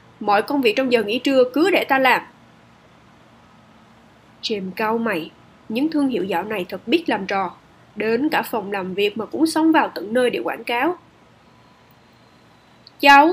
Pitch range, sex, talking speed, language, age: 215-285 Hz, female, 170 wpm, Vietnamese, 10-29